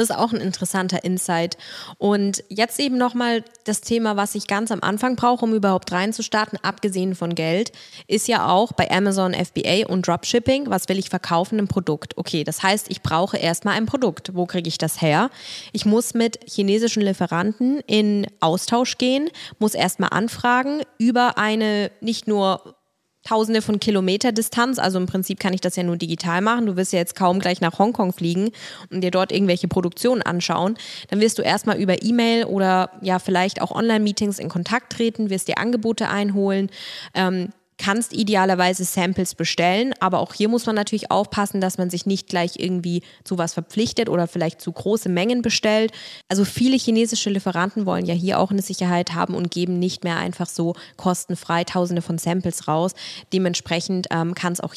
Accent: German